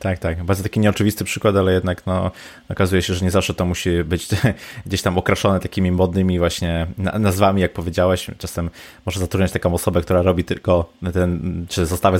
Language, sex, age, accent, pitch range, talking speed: Polish, male, 20-39, native, 80-95 Hz, 180 wpm